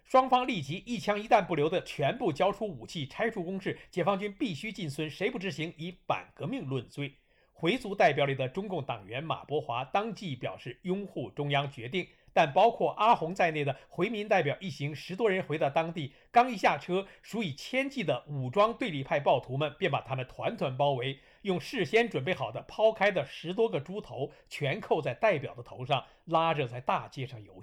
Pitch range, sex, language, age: 135-190 Hz, male, Chinese, 50-69